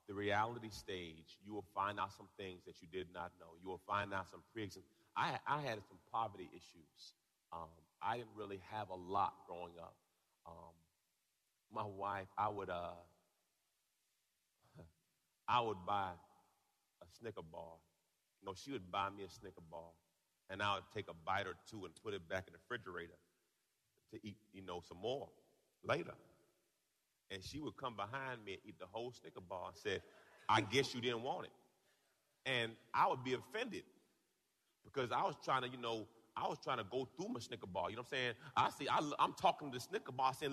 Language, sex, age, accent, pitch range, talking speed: English, male, 40-59, American, 95-155 Hz, 200 wpm